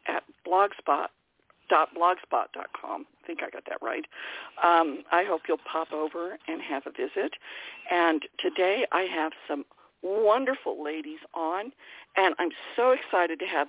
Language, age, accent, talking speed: English, 50-69, American, 140 wpm